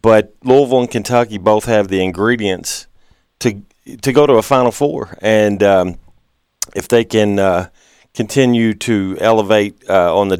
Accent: American